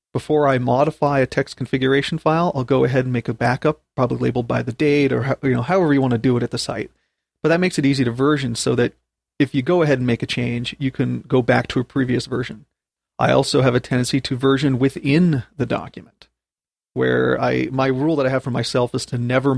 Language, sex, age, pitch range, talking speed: English, male, 40-59, 125-145 Hz, 240 wpm